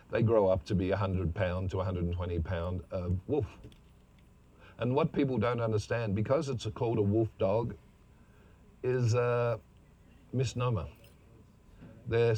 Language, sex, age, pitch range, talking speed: English, male, 50-69, 90-115 Hz, 125 wpm